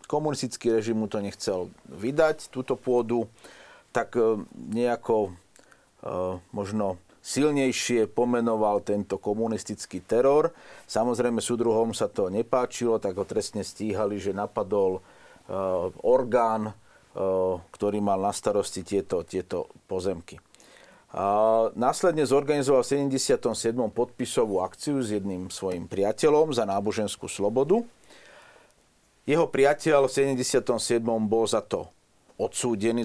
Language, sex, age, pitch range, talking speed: Slovak, male, 50-69, 105-130 Hz, 105 wpm